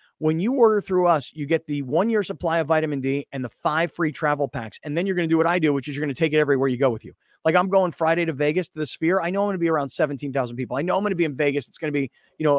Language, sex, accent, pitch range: English, male, American, 135-170 Hz